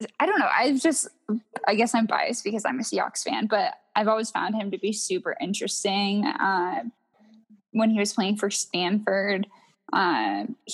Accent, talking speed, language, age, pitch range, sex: American, 175 wpm, English, 10-29, 195-250 Hz, female